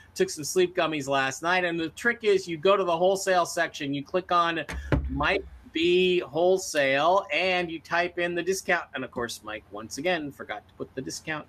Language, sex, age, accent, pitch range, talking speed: English, male, 40-59, American, 150-195 Hz, 205 wpm